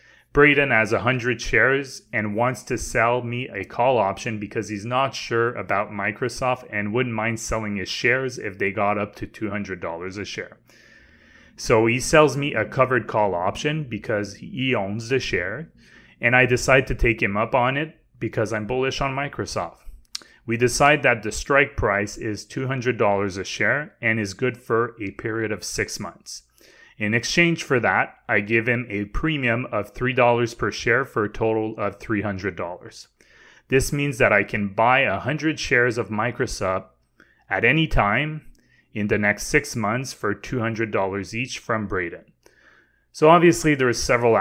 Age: 30-49